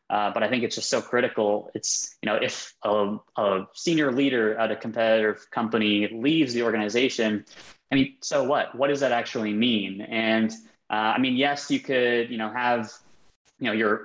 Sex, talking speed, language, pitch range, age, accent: male, 190 wpm, English, 110-130 Hz, 20-39, American